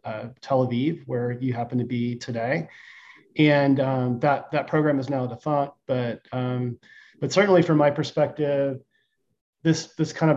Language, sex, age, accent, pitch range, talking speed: English, male, 30-49, American, 125-145 Hz, 160 wpm